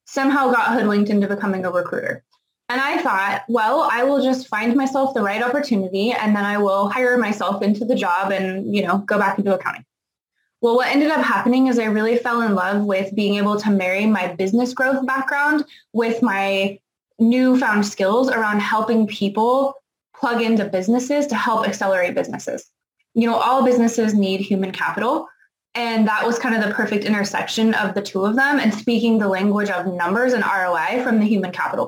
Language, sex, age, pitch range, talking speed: English, female, 20-39, 205-245 Hz, 190 wpm